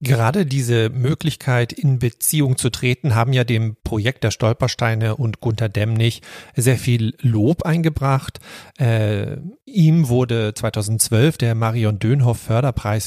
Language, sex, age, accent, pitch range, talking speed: German, male, 40-59, German, 110-130 Hz, 120 wpm